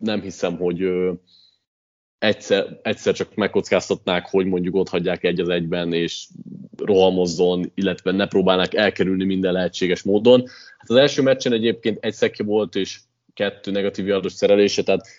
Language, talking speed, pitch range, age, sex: Hungarian, 145 wpm, 90-110 Hz, 20-39, male